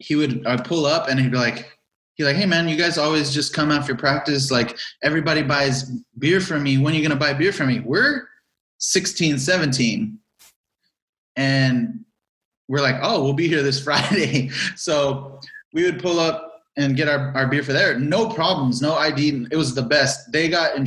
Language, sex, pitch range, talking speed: English, male, 130-160 Hz, 200 wpm